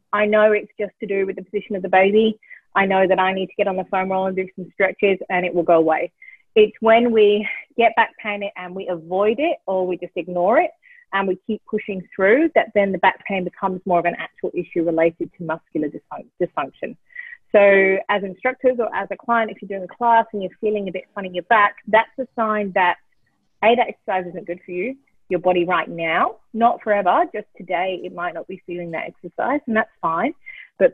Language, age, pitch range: English, 30-49, 180-220 Hz